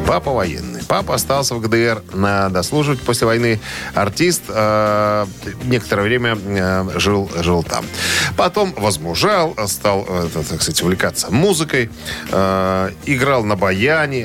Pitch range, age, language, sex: 95-130 Hz, 40-59, Russian, male